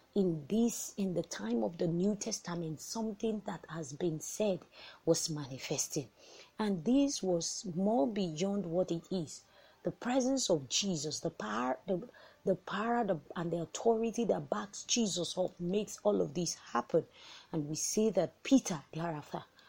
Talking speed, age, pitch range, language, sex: 155 wpm, 30-49, 165-215 Hz, English, female